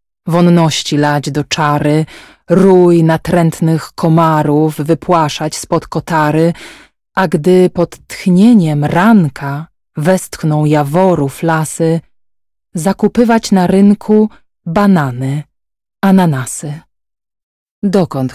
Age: 20-39